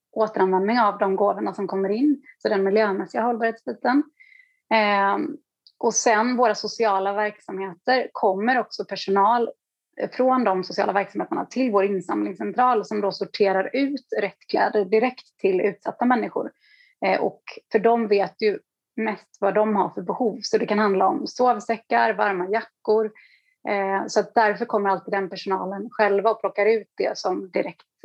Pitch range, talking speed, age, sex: 200-240 Hz, 150 wpm, 30-49, female